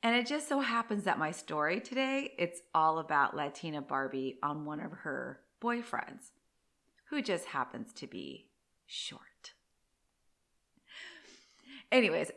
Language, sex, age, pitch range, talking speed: English, female, 30-49, 160-235 Hz, 125 wpm